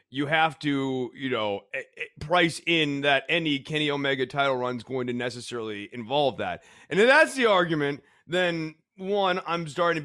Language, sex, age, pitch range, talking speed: English, male, 30-49, 125-170 Hz, 175 wpm